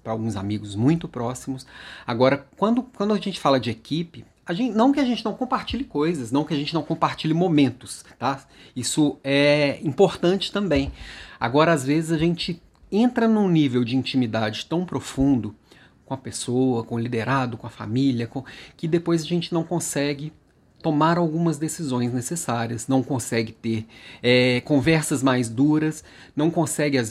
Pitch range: 125-170 Hz